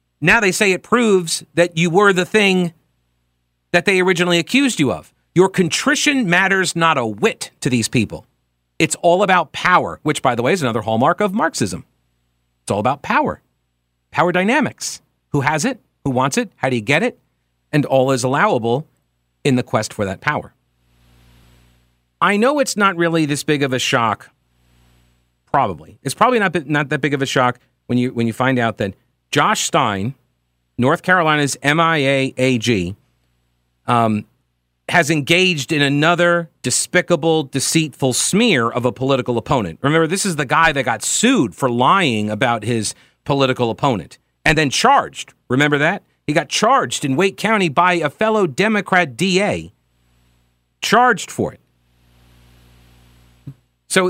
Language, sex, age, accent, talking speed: English, male, 40-59, American, 160 wpm